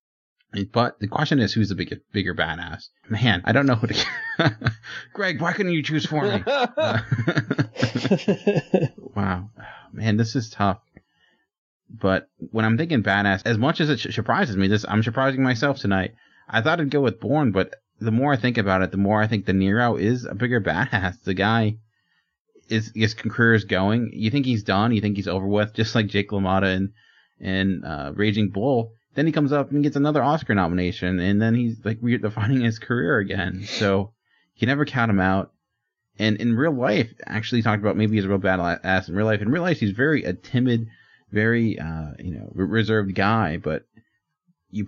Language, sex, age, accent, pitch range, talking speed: English, male, 30-49, American, 100-125 Hz, 200 wpm